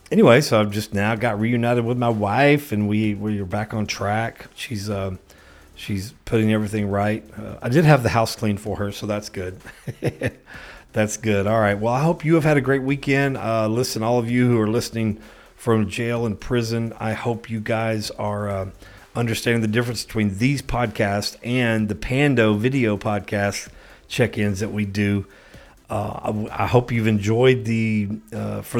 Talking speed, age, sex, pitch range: 190 wpm, 40-59, male, 105-120 Hz